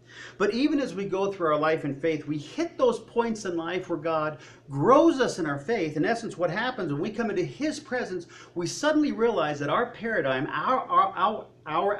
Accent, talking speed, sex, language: American, 215 wpm, male, English